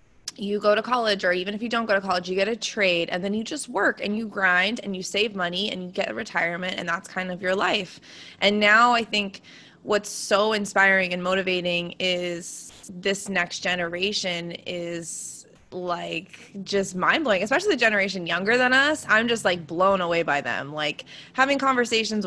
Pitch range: 180-220 Hz